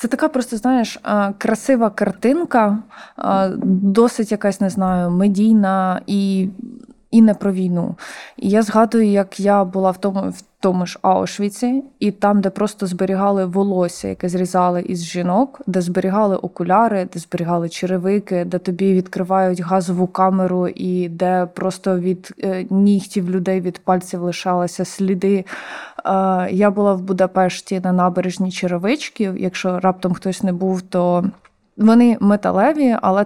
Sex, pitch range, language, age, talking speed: female, 185-210 Hz, Ukrainian, 20-39, 135 wpm